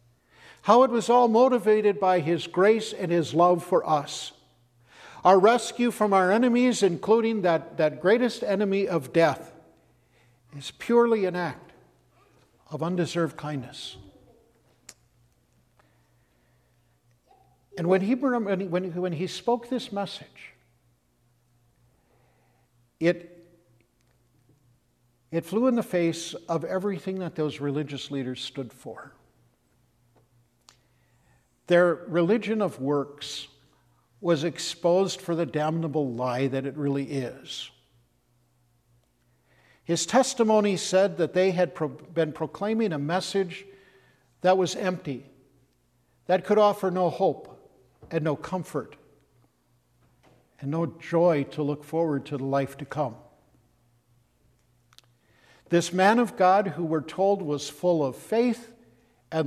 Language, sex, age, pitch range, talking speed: English, male, 60-79, 120-185 Hz, 110 wpm